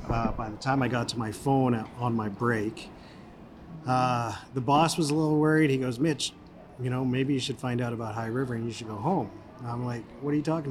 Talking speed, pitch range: 240 wpm, 115-140 Hz